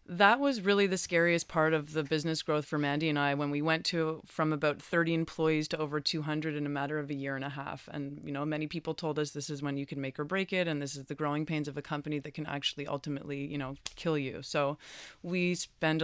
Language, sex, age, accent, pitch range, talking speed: English, female, 30-49, American, 145-165 Hz, 260 wpm